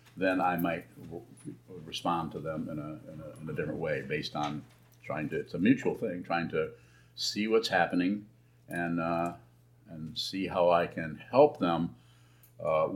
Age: 50-69